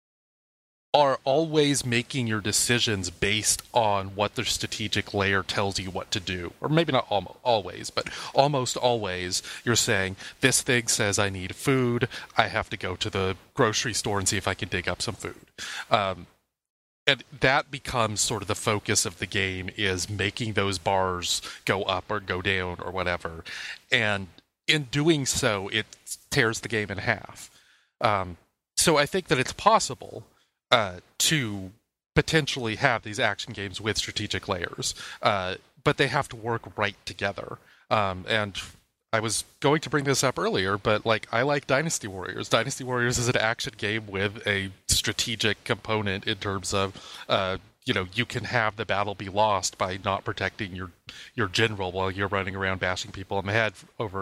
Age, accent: 30-49, American